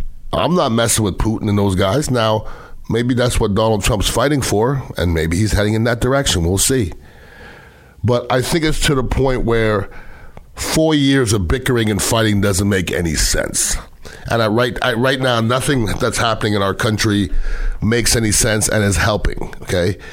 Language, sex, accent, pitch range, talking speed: English, male, American, 95-120 Hz, 185 wpm